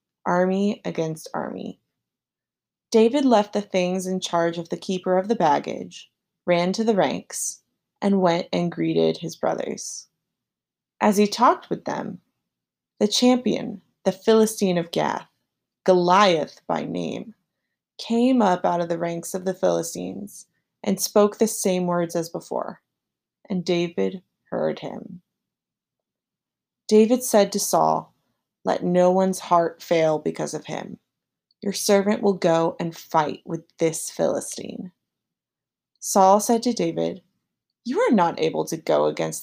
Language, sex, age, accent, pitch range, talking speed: English, female, 20-39, American, 170-225 Hz, 140 wpm